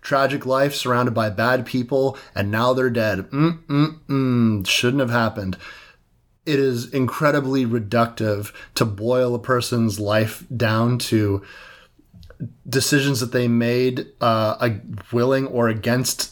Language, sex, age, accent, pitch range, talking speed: English, male, 30-49, American, 110-130 Hz, 130 wpm